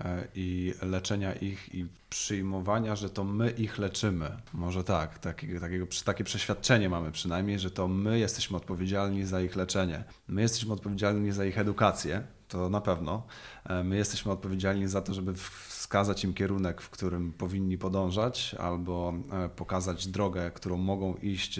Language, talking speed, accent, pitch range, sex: Polish, 150 wpm, native, 90-105 Hz, male